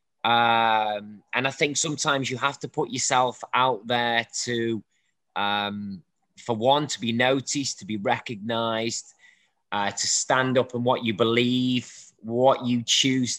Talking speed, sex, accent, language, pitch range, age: 150 wpm, male, British, Bengali, 110-130 Hz, 20-39